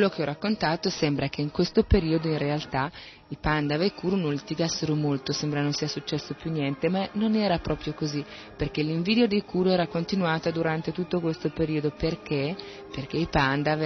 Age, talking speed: 30-49, 190 wpm